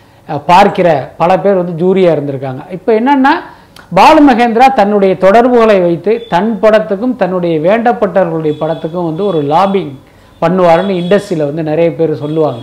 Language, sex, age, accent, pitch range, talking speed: Tamil, male, 50-69, native, 170-230 Hz, 125 wpm